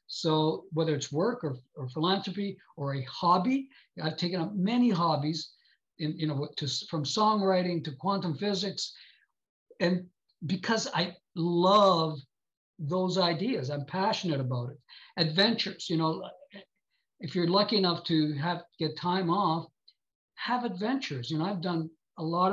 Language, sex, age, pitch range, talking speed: English, male, 60-79, 155-190 Hz, 140 wpm